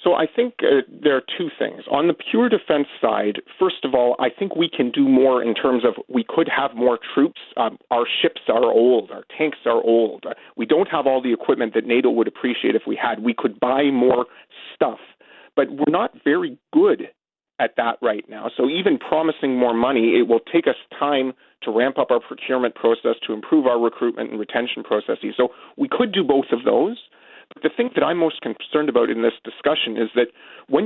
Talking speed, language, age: 215 wpm, English, 40-59